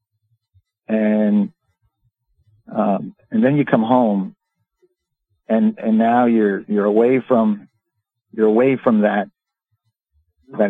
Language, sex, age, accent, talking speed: English, male, 50-69, American, 105 wpm